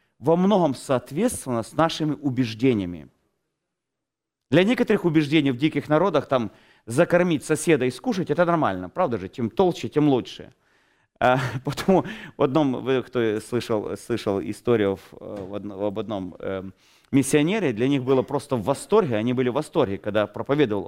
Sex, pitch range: male, 115-165 Hz